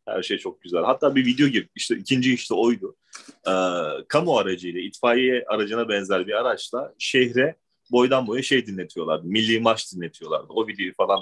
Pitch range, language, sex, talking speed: 125-190 Hz, Turkish, male, 165 wpm